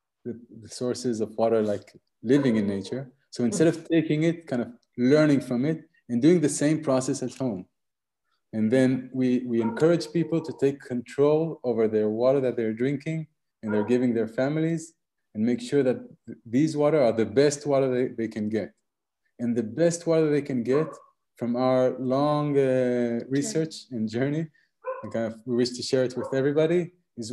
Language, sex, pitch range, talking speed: English, male, 115-140 Hz, 180 wpm